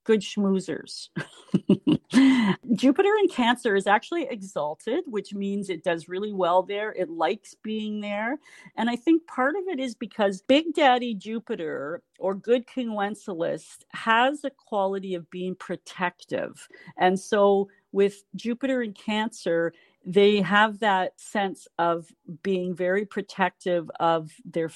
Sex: female